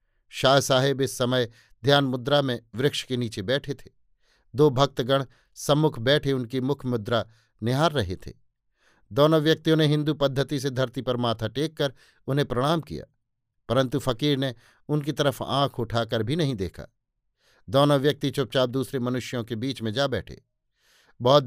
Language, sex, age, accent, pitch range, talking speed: Hindi, male, 50-69, native, 120-140 Hz, 155 wpm